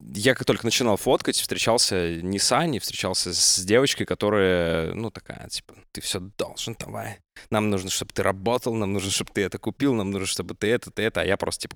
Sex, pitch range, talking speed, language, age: male, 95-115 Hz, 210 wpm, Russian, 20-39